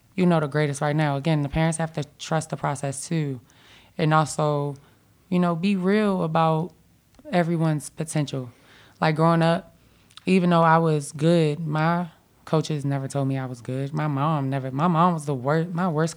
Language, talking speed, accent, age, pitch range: English, 185 wpm, American, 20-39, 145-170 Hz